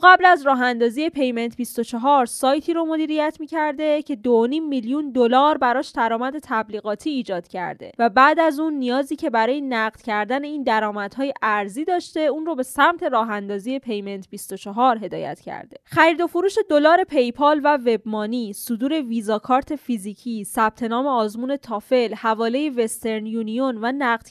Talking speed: 150 wpm